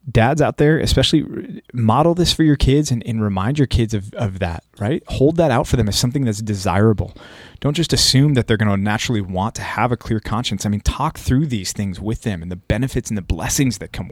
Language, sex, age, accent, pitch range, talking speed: English, male, 30-49, American, 105-125 Hz, 240 wpm